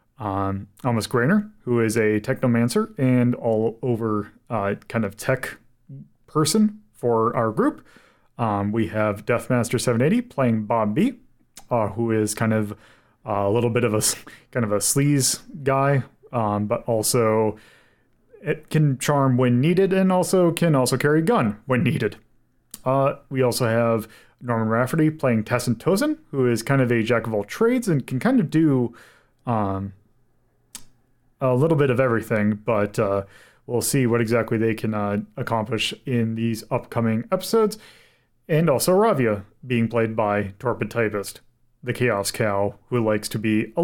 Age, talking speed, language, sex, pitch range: 30-49, 160 wpm, English, male, 110-135 Hz